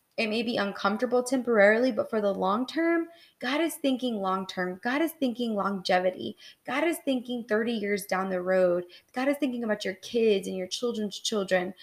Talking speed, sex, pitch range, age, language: 180 wpm, female, 185-230 Hz, 20-39, English